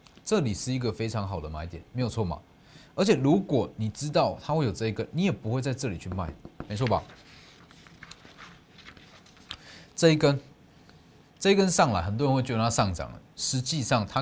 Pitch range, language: 100-145 Hz, Chinese